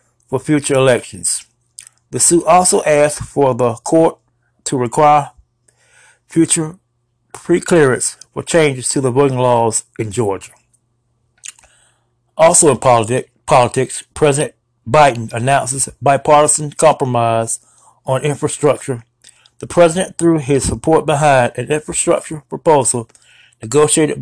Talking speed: 105 wpm